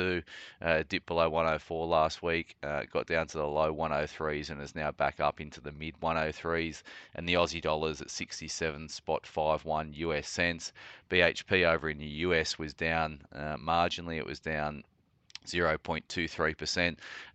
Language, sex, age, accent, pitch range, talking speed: English, male, 30-49, Australian, 80-85 Hz, 155 wpm